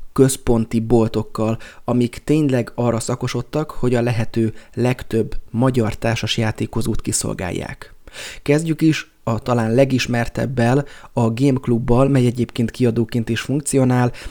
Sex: male